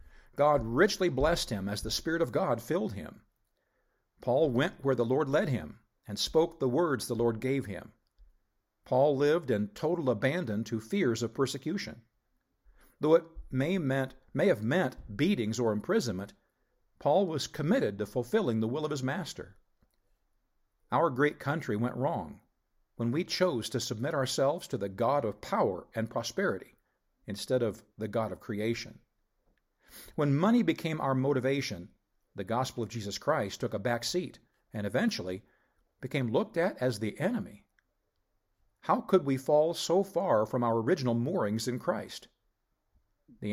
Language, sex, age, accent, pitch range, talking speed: English, male, 50-69, American, 110-150 Hz, 155 wpm